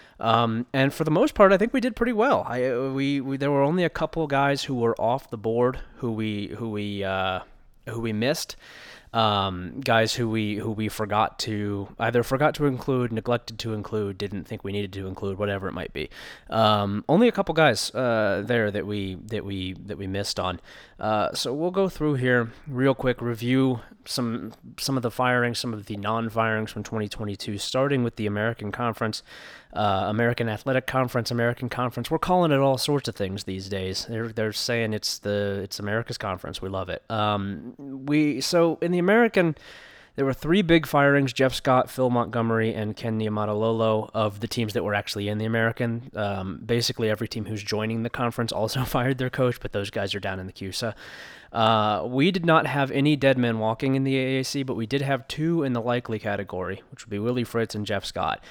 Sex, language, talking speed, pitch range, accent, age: male, English, 205 wpm, 105-135 Hz, American, 20-39